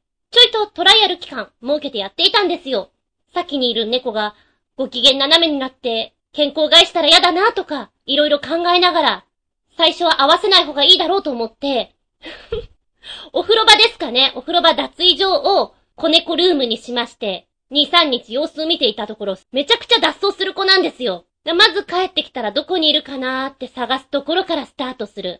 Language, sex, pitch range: Japanese, female, 255-360 Hz